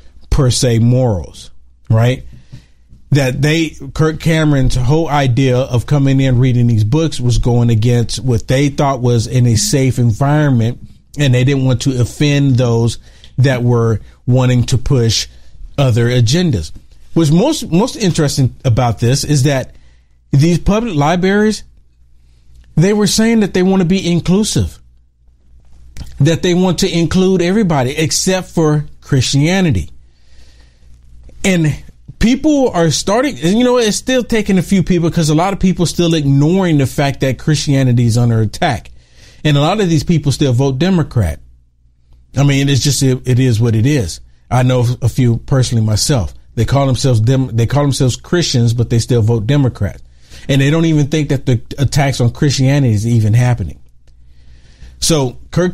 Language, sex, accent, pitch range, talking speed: English, male, American, 115-150 Hz, 160 wpm